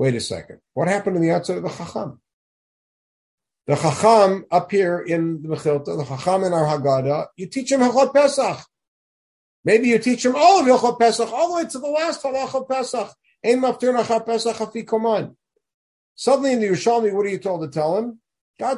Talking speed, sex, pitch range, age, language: 180 wpm, male, 135-210 Hz, 50-69, English